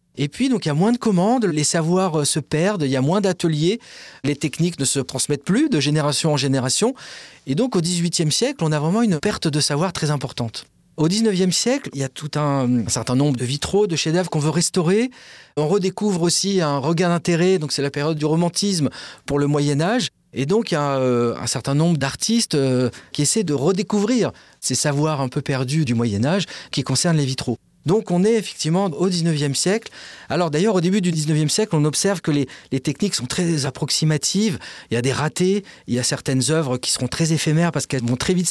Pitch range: 135-185 Hz